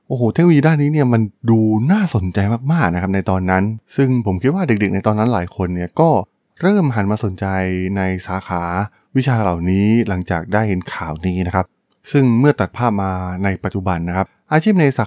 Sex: male